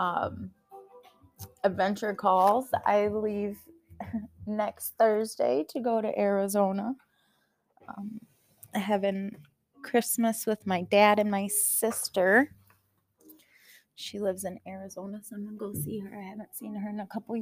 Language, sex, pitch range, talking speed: English, female, 170-230 Hz, 130 wpm